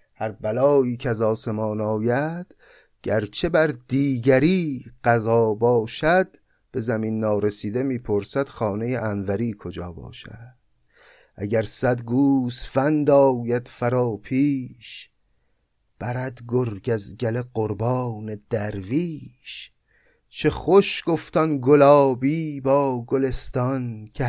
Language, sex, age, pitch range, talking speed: Persian, male, 30-49, 110-145 Hz, 95 wpm